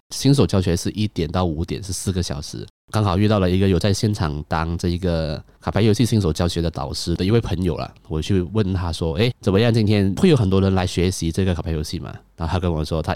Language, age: Chinese, 20-39